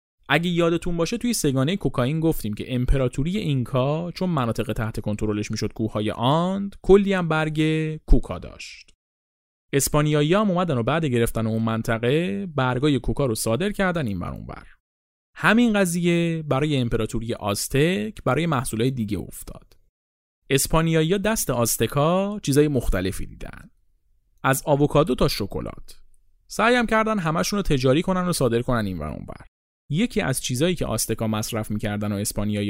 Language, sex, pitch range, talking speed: Persian, male, 110-175 Hz, 140 wpm